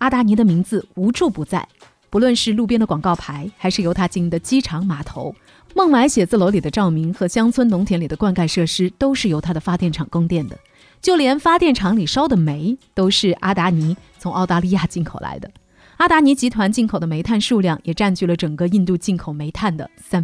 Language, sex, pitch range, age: Chinese, female, 175-240 Hz, 30-49